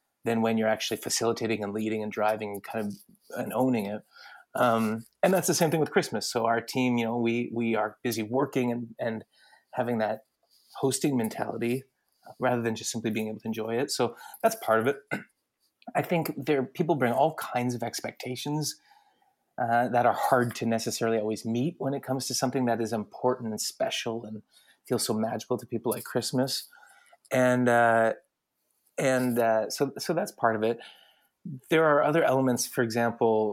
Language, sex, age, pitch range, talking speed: English, male, 30-49, 110-130 Hz, 185 wpm